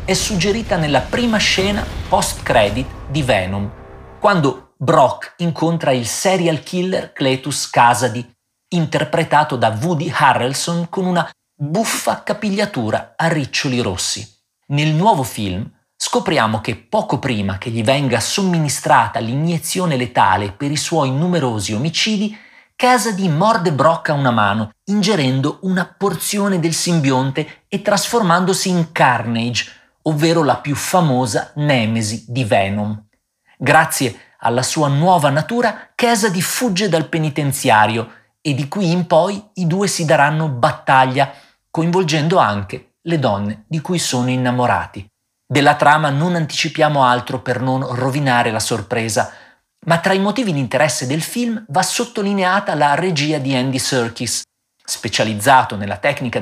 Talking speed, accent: 130 wpm, native